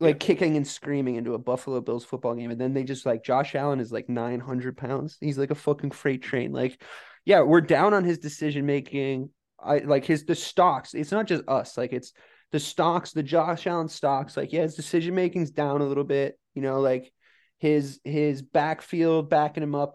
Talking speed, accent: 210 wpm, American